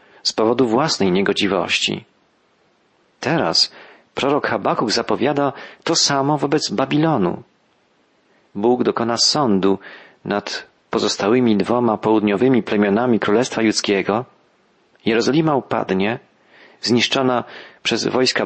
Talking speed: 90 wpm